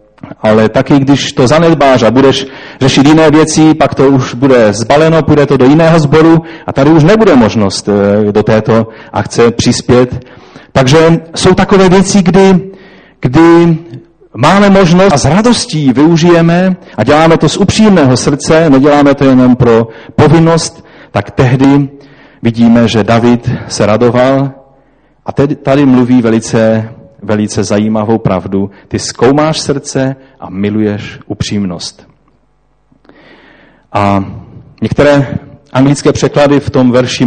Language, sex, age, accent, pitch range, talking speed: Czech, male, 30-49, native, 115-145 Hz, 125 wpm